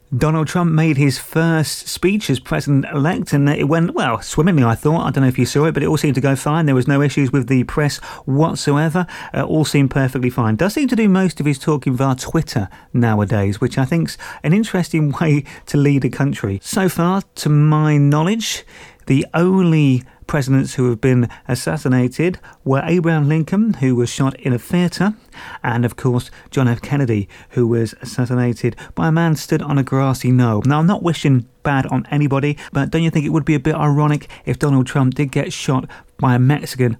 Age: 30-49